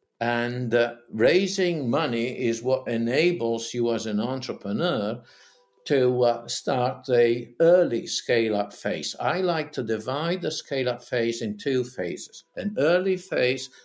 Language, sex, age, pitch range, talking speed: Italian, male, 60-79, 115-155 Hz, 145 wpm